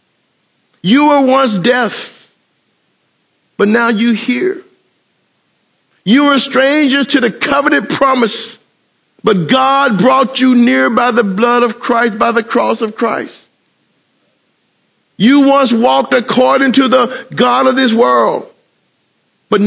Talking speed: 125 wpm